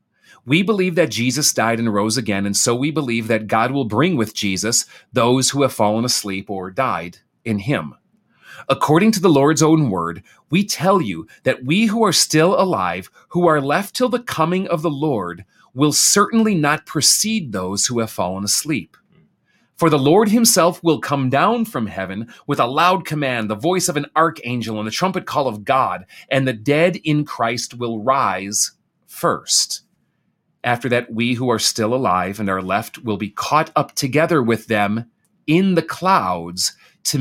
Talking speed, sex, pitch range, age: 180 wpm, male, 110-165 Hz, 30-49